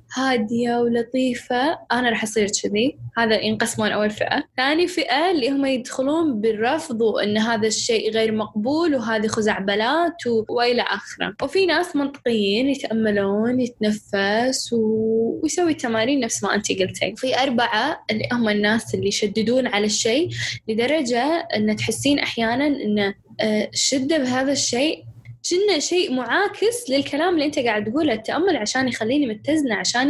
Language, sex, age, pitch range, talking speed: Arabic, female, 10-29, 215-275 Hz, 135 wpm